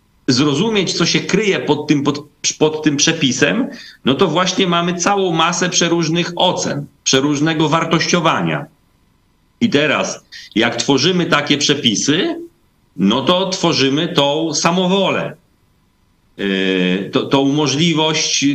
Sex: male